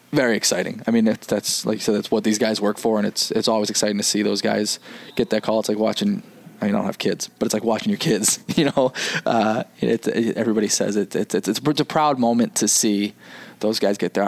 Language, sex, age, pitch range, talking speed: English, male, 20-39, 105-120 Hz, 265 wpm